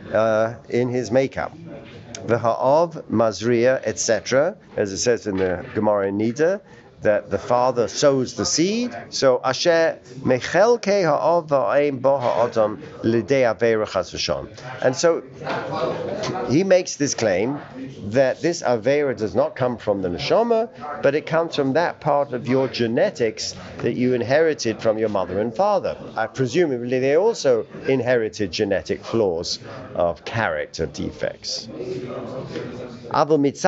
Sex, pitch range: male, 115-160 Hz